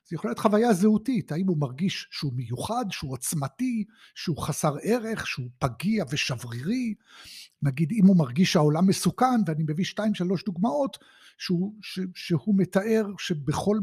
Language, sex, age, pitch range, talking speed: Hebrew, male, 60-79, 150-215 Hz, 145 wpm